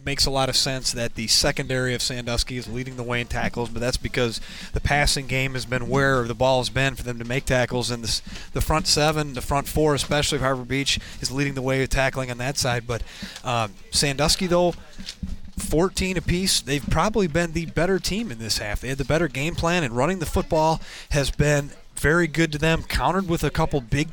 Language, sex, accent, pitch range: English, male, American, 130-165 Hz